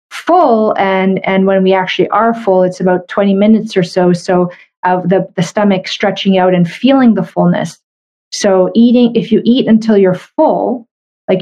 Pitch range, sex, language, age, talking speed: 190-250 Hz, female, English, 30-49, 180 wpm